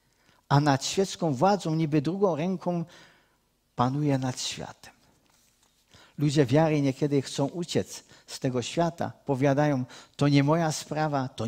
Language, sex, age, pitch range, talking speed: Czech, male, 50-69, 125-160 Hz, 125 wpm